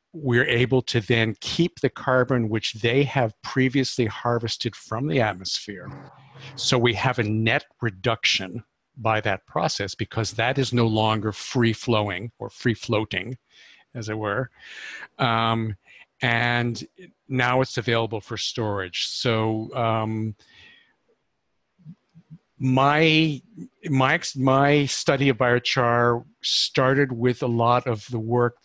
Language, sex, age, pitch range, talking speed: English, male, 50-69, 110-135 Hz, 115 wpm